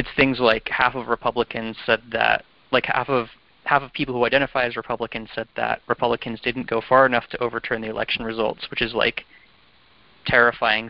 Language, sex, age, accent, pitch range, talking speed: English, male, 20-39, American, 110-125 Hz, 185 wpm